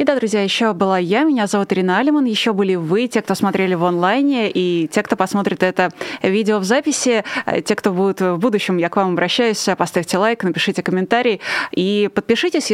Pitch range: 190-240 Hz